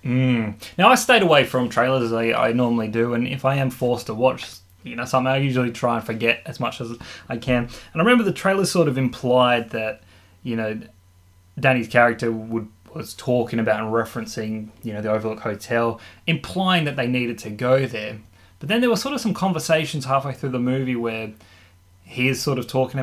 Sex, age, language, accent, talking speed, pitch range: male, 20-39, English, Australian, 210 wpm, 110-140 Hz